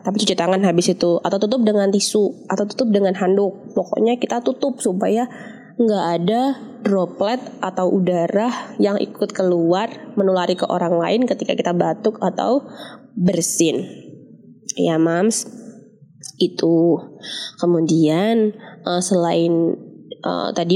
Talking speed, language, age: 120 wpm, Indonesian, 20-39